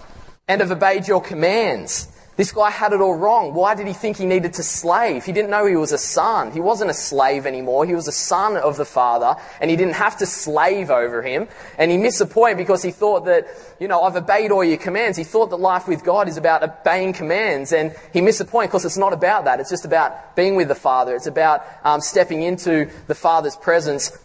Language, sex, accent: English, male, Australian